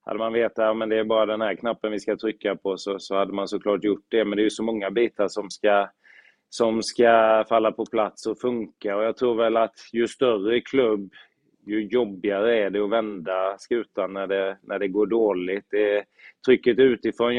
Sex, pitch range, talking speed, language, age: male, 100-110 Hz, 215 wpm, Swedish, 20-39